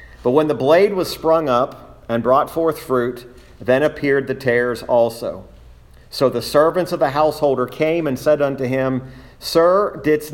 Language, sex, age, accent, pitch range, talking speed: English, male, 50-69, American, 110-145 Hz, 170 wpm